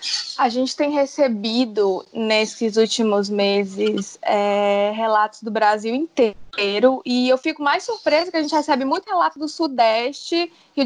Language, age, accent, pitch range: Portuguese, 20-39, Brazilian, 245-305 Hz